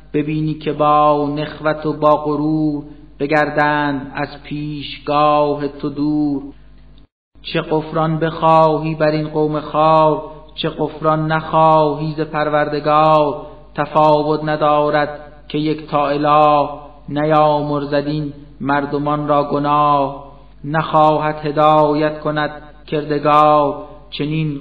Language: Persian